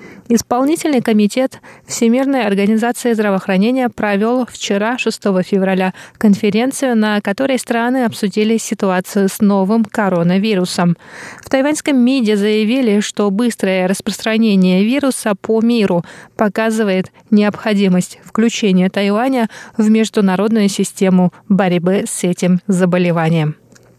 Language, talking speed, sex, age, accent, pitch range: Russian, 100 wpm, female, 20-39, native, 200-235 Hz